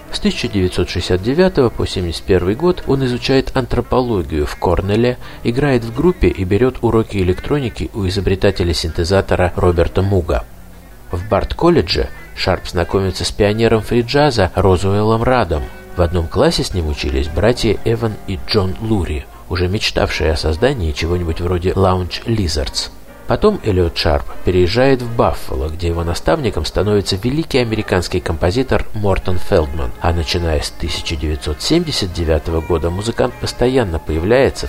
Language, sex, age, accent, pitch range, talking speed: Russian, male, 50-69, native, 85-115 Hz, 125 wpm